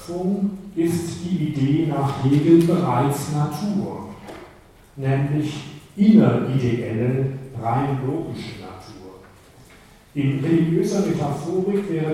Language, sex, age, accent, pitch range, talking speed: German, male, 40-59, German, 125-170 Hz, 80 wpm